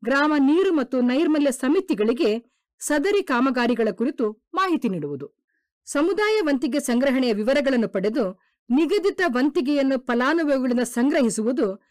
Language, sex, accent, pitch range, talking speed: Kannada, female, native, 235-315 Hz, 95 wpm